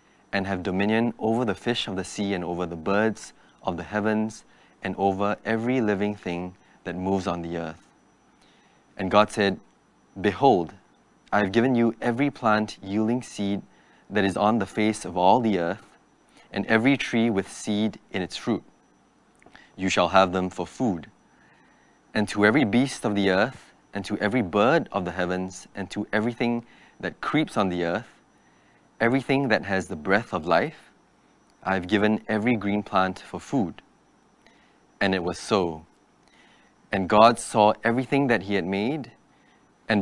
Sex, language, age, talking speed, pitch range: male, English, 20-39, 165 wpm, 95-110 Hz